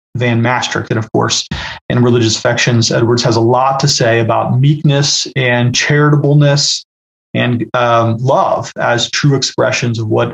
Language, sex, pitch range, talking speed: English, male, 120-150 Hz, 150 wpm